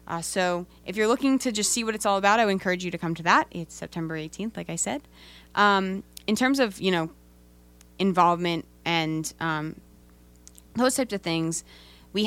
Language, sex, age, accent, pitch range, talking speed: English, female, 20-39, American, 160-200 Hz, 195 wpm